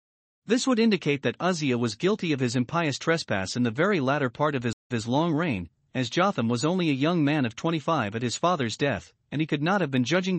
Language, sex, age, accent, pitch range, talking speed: English, male, 40-59, American, 125-170 Hz, 230 wpm